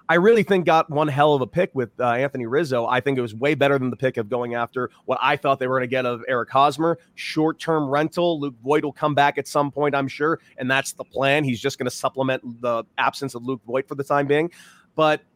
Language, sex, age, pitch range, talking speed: English, male, 30-49, 130-160 Hz, 260 wpm